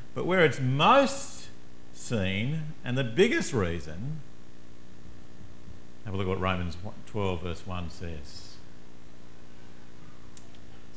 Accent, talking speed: Australian, 110 wpm